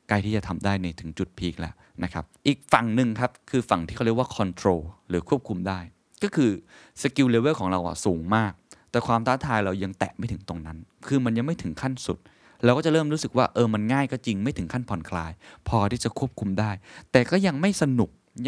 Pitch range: 90-120 Hz